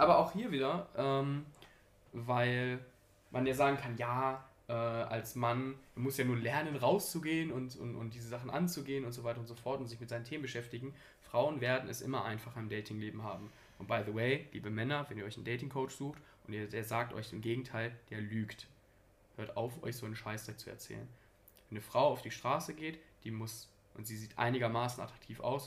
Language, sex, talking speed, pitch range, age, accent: German, male, 210 wpm, 110-135 Hz, 20-39, German